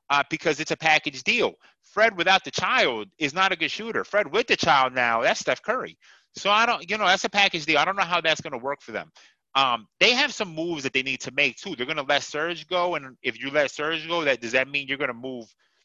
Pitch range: 125-180 Hz